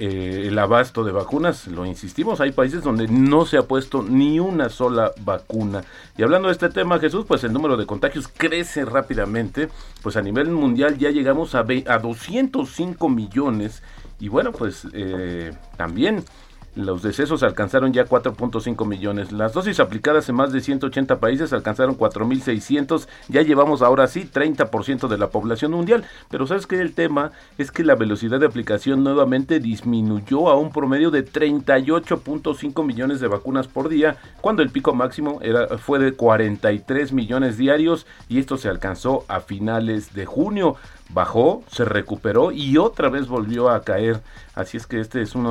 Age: 40-59